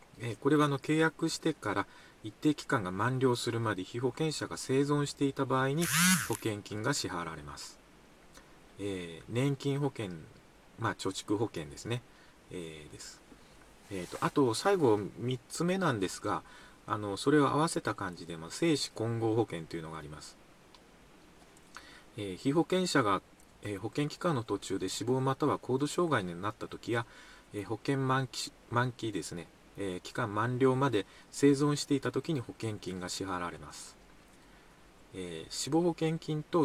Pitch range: 100-145 Hz